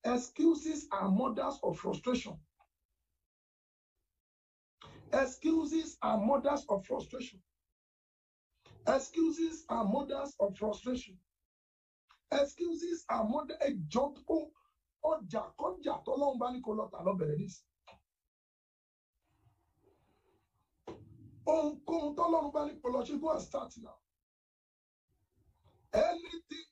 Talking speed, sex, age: 60 wpm, male, 50-69